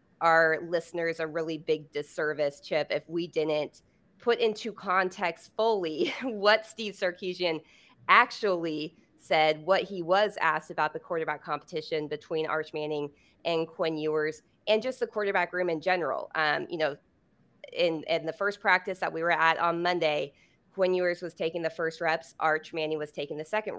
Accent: American